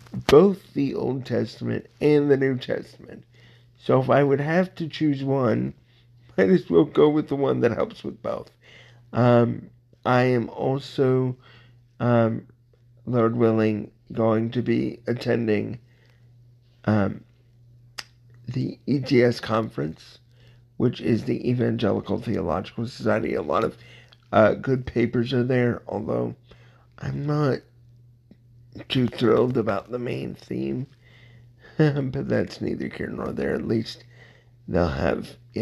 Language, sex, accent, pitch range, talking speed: English, male, American, 115-125 Hz, 130 wpm